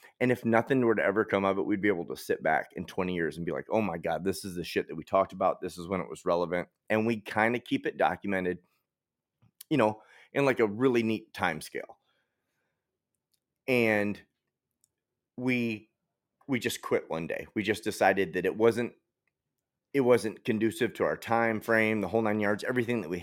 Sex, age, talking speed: male, 30-49, 205 wpm